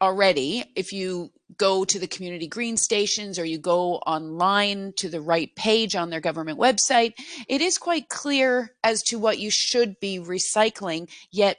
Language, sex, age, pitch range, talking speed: English, female, 40-59, 180-225 Hz, 170 wpm